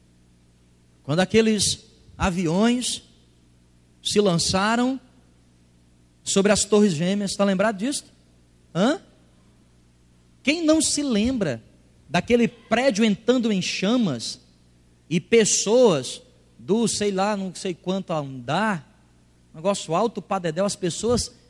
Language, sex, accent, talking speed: Portuguese, male, Brazilian, 100 wpm